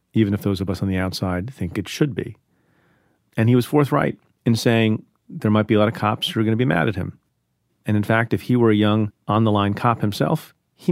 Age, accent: 40-59, American